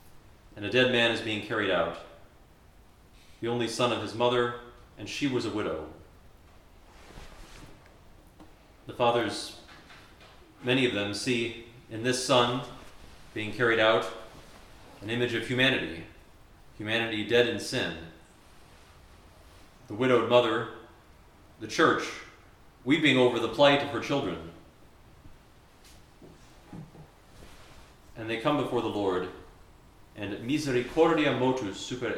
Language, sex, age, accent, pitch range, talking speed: English, male, 40-59, American, 95-125 Hz, 115 wpm